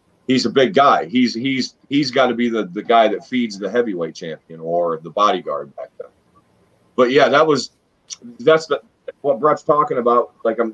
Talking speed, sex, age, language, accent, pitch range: 195 wpm, male, 40-59, English, American, 105-145 Hz